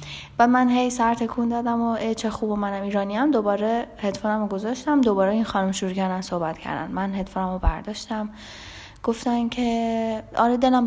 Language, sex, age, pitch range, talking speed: Persian, female, 10-29, 185-225 Hz, 170 wpm